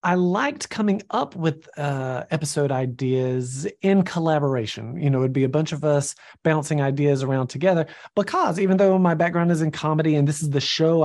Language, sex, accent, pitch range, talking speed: English, male, American, 135-175 Hz, 190 wpm